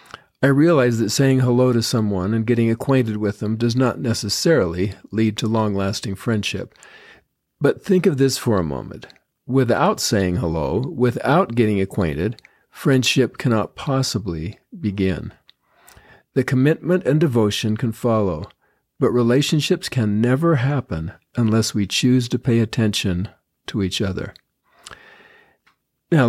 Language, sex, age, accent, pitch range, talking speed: English, male, 50-69, American, 105-130 Hz, 130 wpm